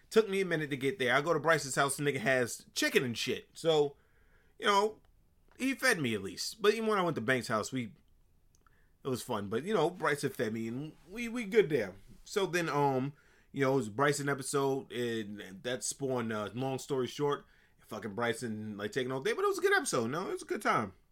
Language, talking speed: English, 245 wpm